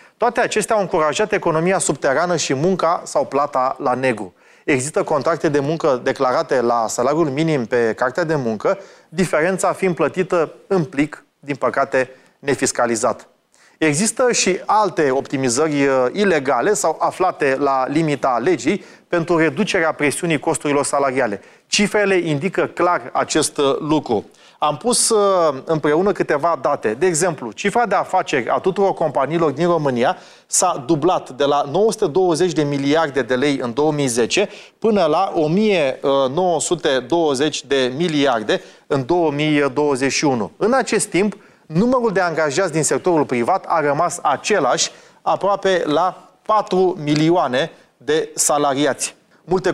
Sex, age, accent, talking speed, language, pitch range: male, 30-49, native, 125 wpm, Romanian, 140-185 Hz